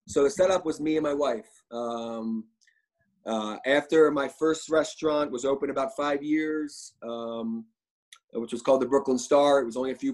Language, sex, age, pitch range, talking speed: English, male, 20-39, 120-145 Hz, 185 wpm